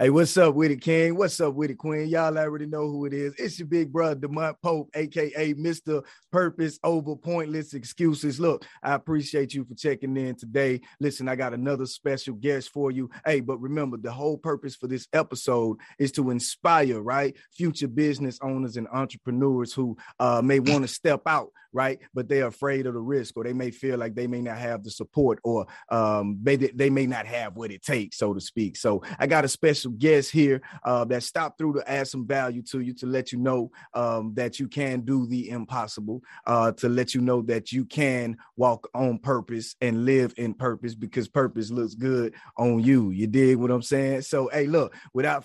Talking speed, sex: 210 wpm, male